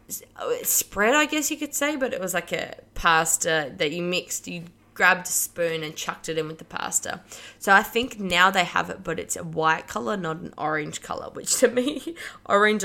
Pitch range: 160-200 Hz